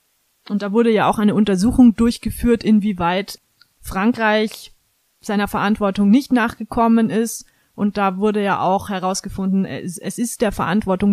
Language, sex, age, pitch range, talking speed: German, female, 30-49, 200-240 Hz, 140 wpm